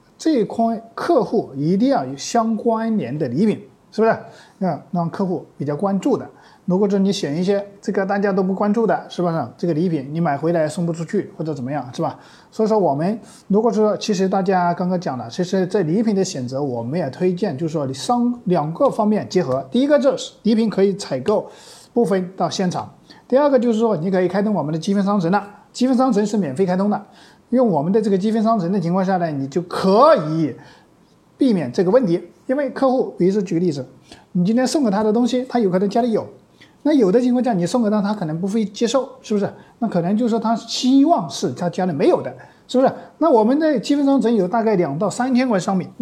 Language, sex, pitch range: Chinese, male, 175-230 Hz